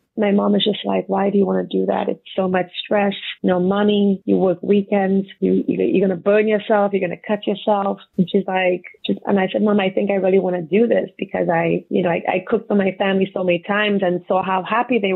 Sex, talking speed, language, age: female, 255 wpm, English, 30-49